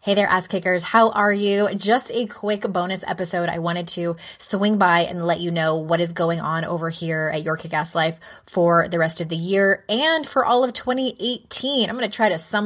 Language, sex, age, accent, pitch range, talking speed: English, female, 20-39, American, 170-215 Hz, 230 wpm